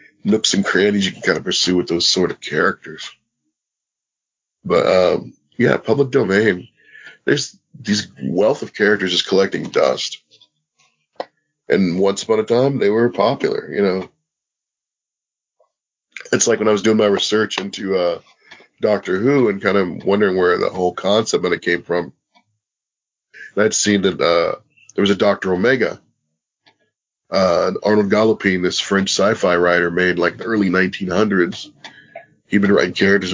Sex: male